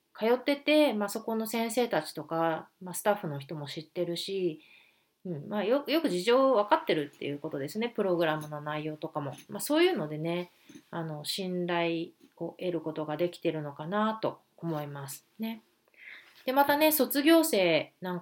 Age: 30-49